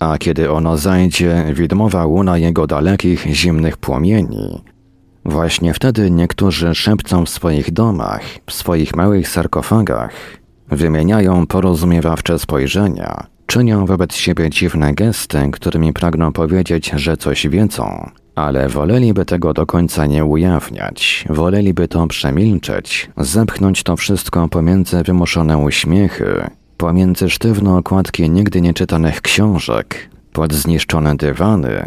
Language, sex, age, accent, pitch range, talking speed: Polish, male, 40-59, native, 80-95 Hz, 115 wpm